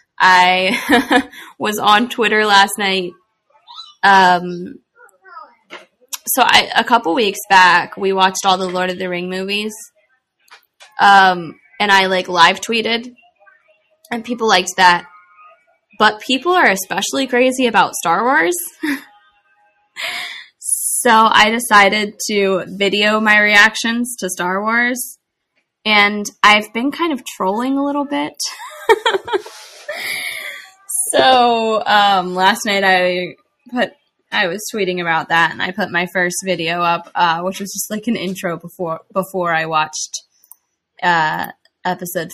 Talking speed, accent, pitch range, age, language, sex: 130 wpm, American, 180-250 Hz, 20-39, English, female